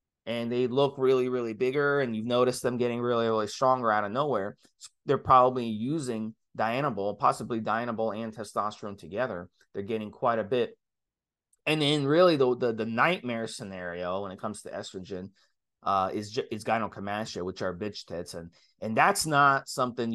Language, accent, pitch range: English, American, 105-130 Hz